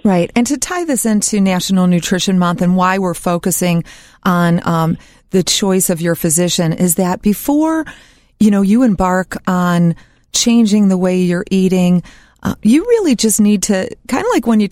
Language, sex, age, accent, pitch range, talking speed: English, female, 40-59, American, 185-215 Hz, 180 wpm